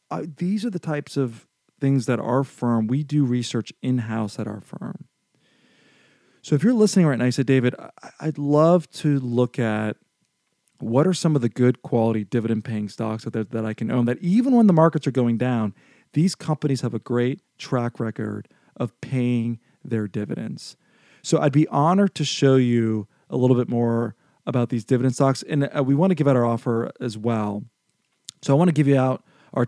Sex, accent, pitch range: male, American, 115-145 Hz